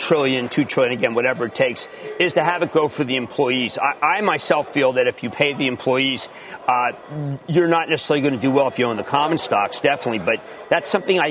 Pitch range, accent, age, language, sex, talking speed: 145-190 Hz, American, 40-59, English, male, 235 wpm